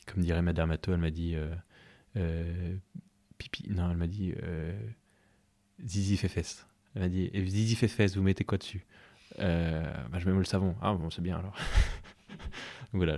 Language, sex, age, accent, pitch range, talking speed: French, male, 20-39, French, 85-105 Hz, 180 wpm